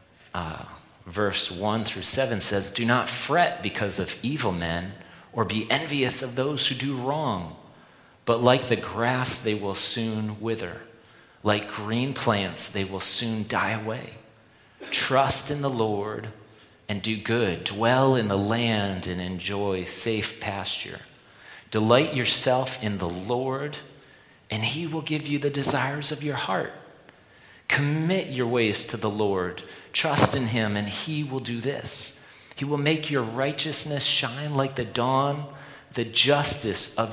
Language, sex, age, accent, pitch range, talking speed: English, male, 40-59, American, 105-130 Hz, 150 wpm